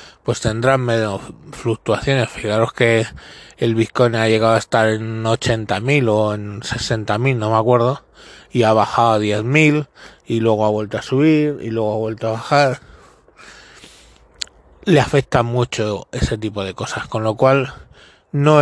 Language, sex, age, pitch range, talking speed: Spanish, male, 20-39, 110-135 Hz, 155 wpm